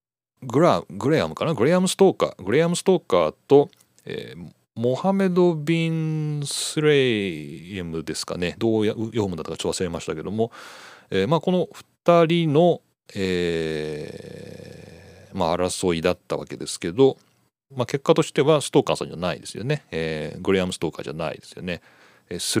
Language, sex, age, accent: Japanese, male, 40-59, native